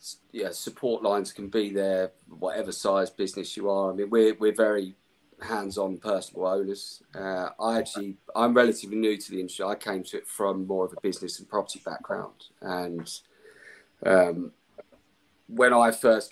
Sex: male